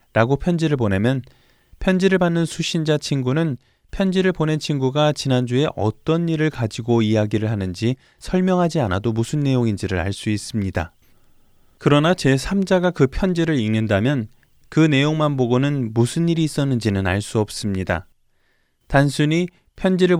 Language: Korean